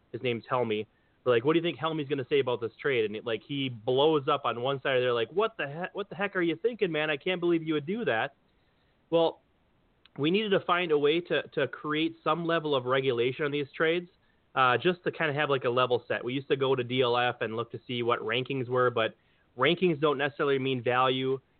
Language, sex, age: English, male, 30-49